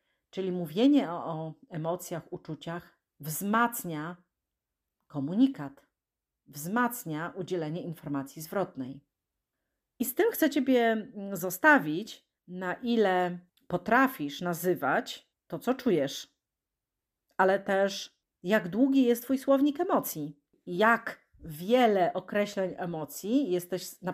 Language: Polish